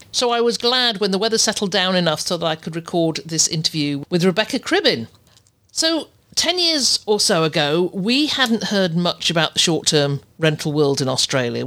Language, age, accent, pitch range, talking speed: English, 50-69, British, 150-195 Hz, 190 wpm